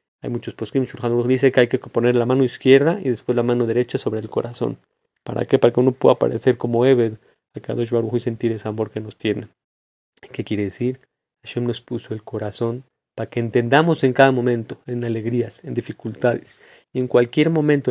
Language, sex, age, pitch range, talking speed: Spanish, male, 40-59, 110-130 Hz, 210 wpm